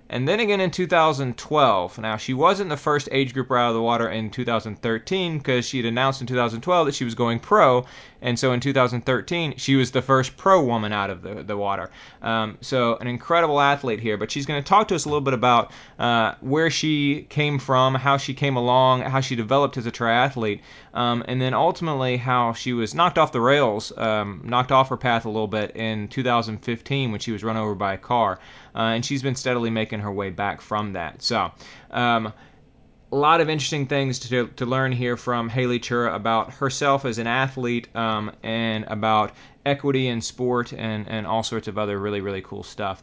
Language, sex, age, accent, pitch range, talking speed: English, male, 30-49, American, 110-135 Hz, 210 wpm